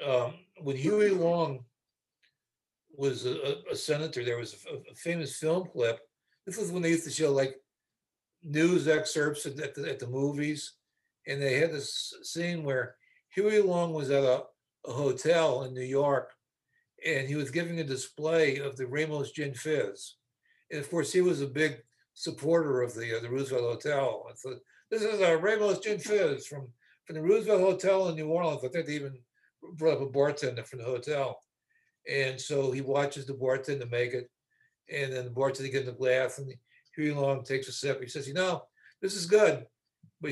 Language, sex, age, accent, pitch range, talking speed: English, male, 60-79, American, 135-180 Hz, 190 wpm